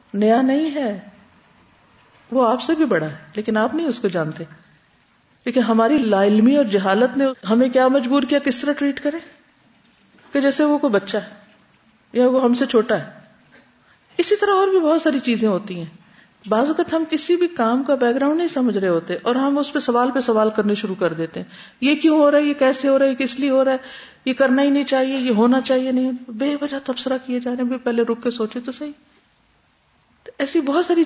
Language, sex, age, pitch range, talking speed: Urdu, female, 50-69, 210-275 Hz, 220 wpm